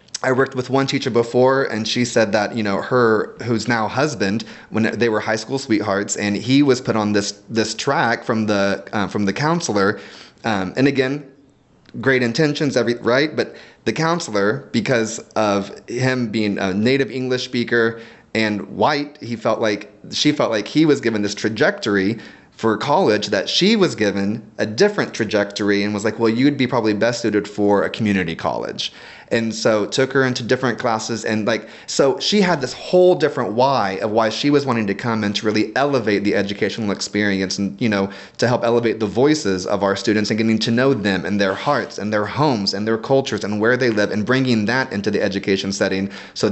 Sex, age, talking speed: male, 30-49, 200 wpm